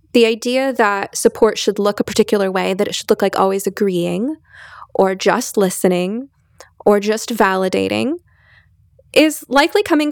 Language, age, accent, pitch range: English, 20-39, American, 185-245 Hz